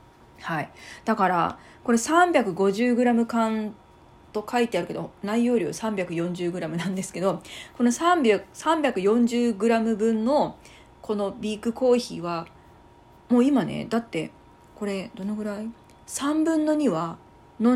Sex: female